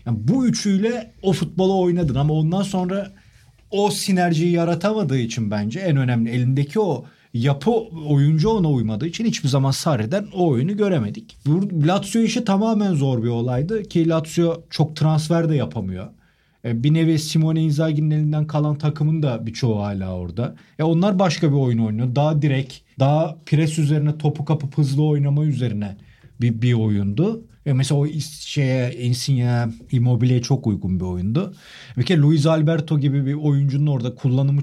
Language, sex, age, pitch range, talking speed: Turkish, male, 40-59, 125-160 Hz, 155 wpm